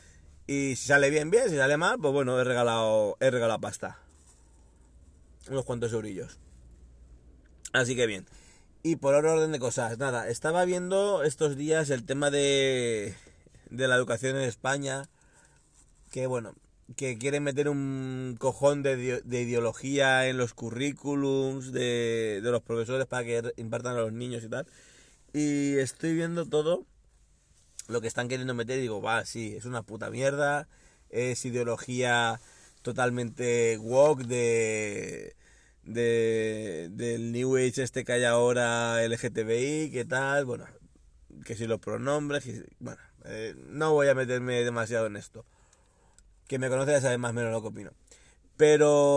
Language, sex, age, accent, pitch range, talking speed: Spanish, male, 30-49, Spanish, 115-135 Hz, 150 wpm